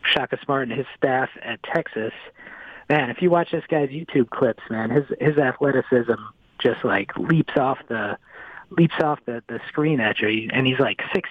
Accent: American